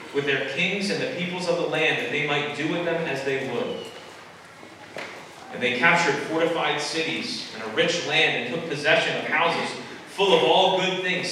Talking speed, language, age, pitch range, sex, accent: 195 wpm, English, 30-49, 135-165 Hz, male, American